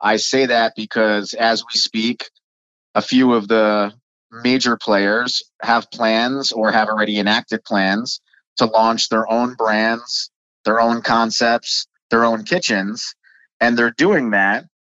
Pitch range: 110-125 Hz